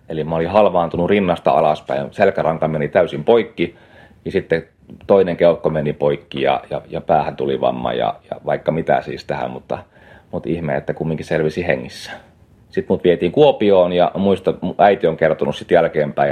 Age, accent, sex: 30-49, native, male